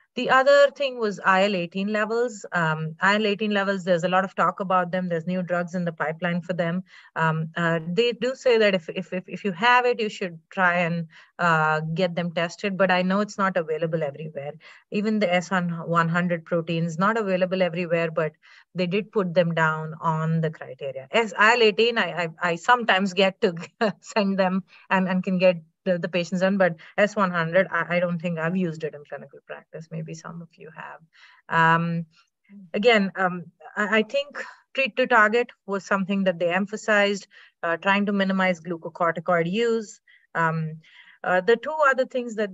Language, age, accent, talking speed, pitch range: English, 30-49, Indian, 180 wpm, 170-205 Hz